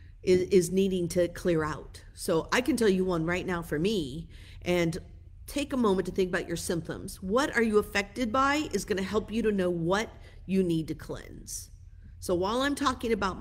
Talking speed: 205 wpm